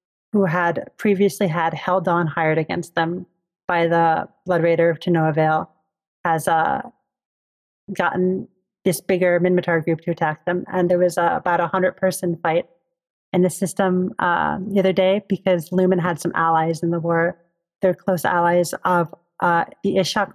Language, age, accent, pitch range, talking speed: English, 30-49, American, 170-185 Hz, 170 wpm